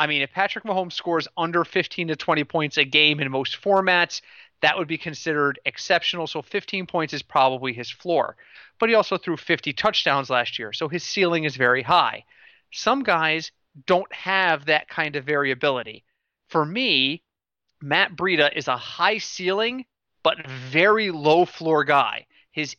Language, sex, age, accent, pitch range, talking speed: English, male, 30-49, American, 145-195 Hz, 170 wpm